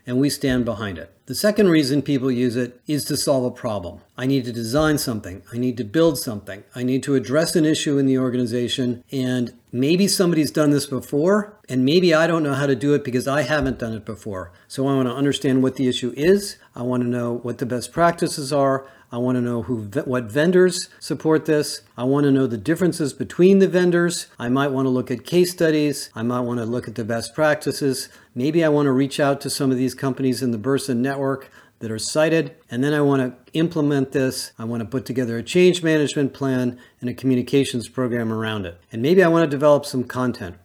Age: 40-59